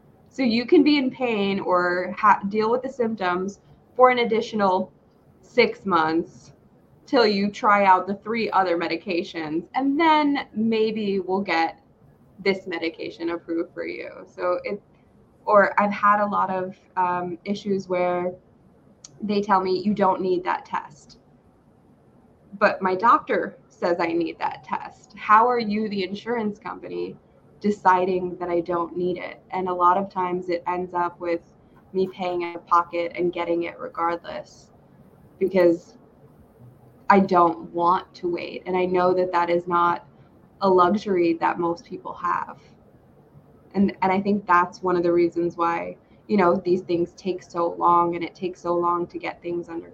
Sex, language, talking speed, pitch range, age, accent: female, English, 160 wpm, 170-200 Hz, 20-39, American